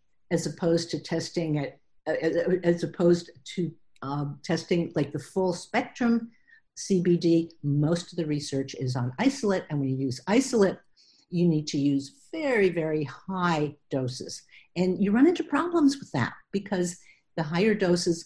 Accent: American